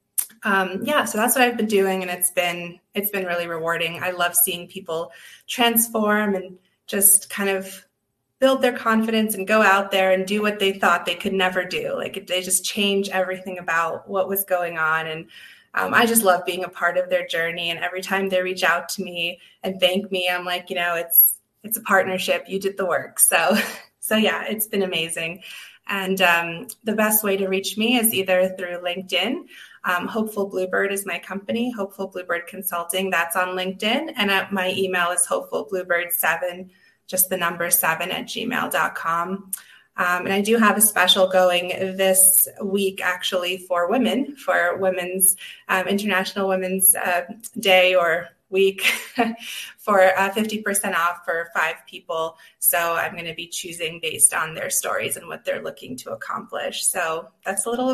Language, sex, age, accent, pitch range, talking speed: English, female, 20-39, American, 175-205 Hz, 180 wpm